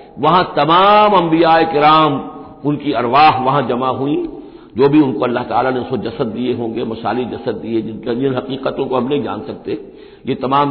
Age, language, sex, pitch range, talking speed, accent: 60-79, Hindi, male, 125-175 Hz, 180 wpm, native